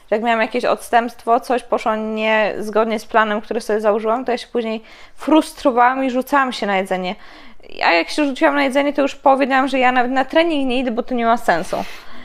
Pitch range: 205-265 Hz